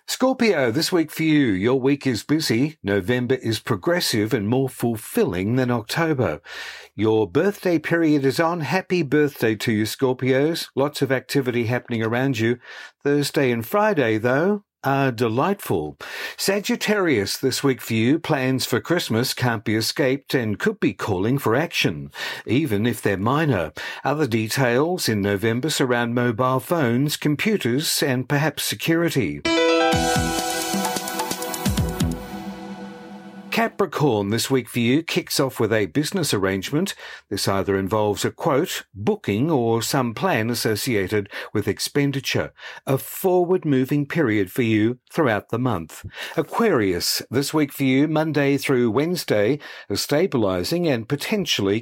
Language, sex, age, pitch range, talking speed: English, male, 50-69, 115-155 Hz, 135 wpm